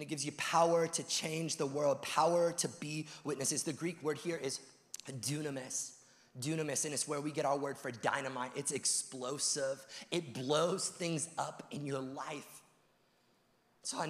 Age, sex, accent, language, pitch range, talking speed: 30-49, male, American, English, 145-195 Hz, 165 wpm